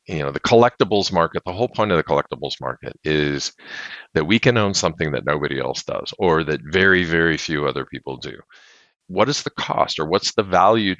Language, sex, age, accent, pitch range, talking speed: English, male, 50-69, American, 80-110 Hz, 205 wpm